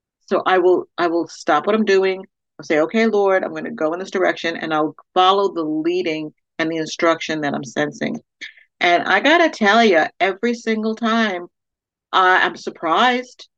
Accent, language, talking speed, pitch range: American, English, 190 wpm, 165-230 Hz